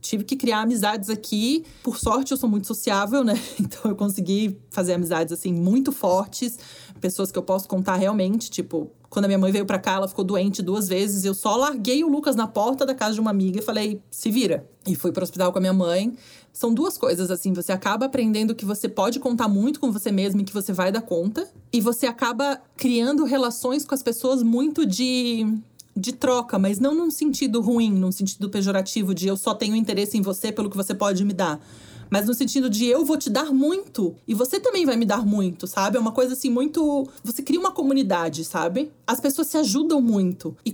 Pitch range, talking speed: 195-265 Hz, 220 wpm